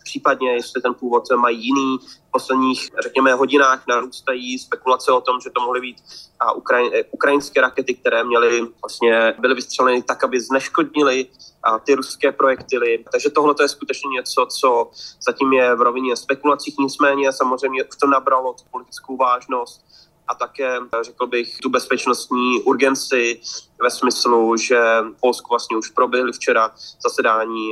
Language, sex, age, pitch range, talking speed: Slovak, male, 20-39, 120-135 Hz, 145 wpm